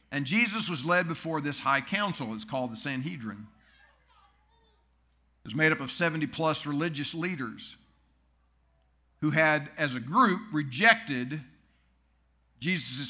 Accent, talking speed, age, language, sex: American, 130 wpm, 50-69, English, male